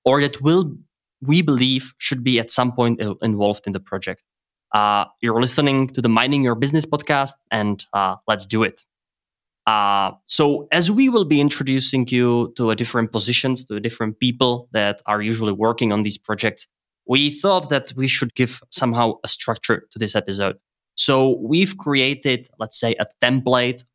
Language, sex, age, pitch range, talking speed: English, male, 20-39, 110-135 Hz, 175 wpm